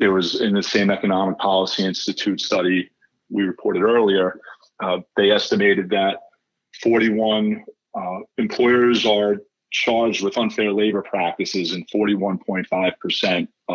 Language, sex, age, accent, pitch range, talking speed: English, male, 40-59, American, 95-110 Hz, 120 wpm